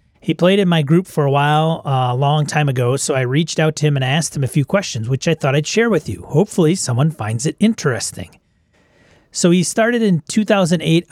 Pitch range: 135-175 Hz